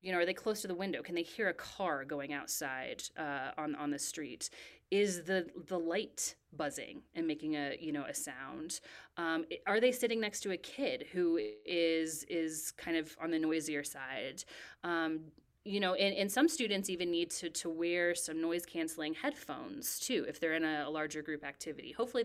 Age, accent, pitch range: 30-49, American, 150-185 Hz